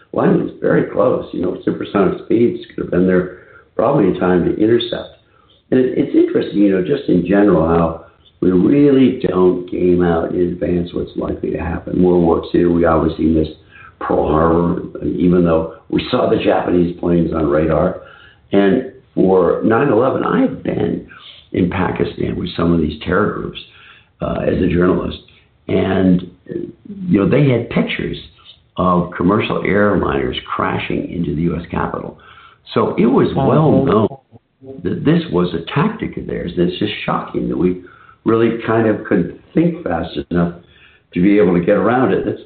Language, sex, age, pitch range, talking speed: English, male, 60-79, 85-105 Hz, 170 wpm